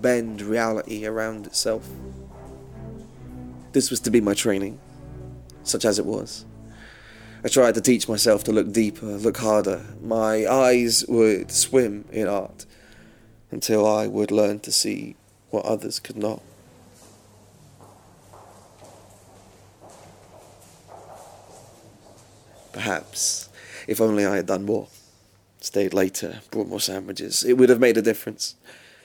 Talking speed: 120 wpm